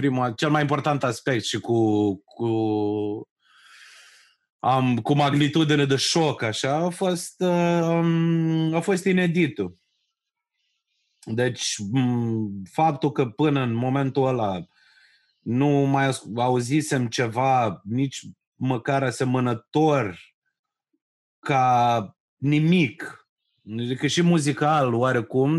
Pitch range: 120-165 Hz